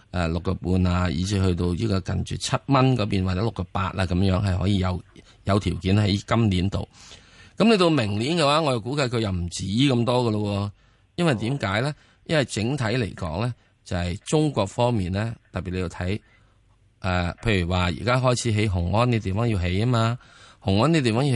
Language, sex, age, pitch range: Chinese, male, 20-39, 95-120 Hz